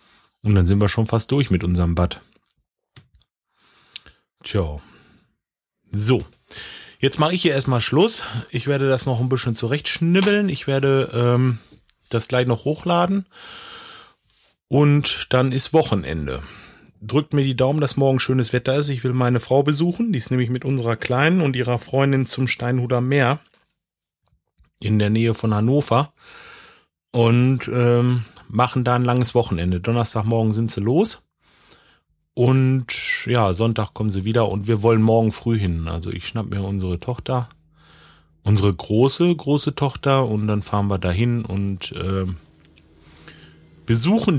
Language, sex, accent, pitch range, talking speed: German, male, German, 100-130 Hz, 145 wpm